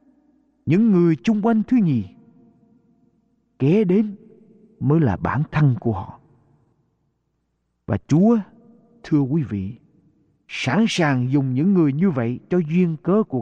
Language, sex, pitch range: Japanese, male, 125-195 Hz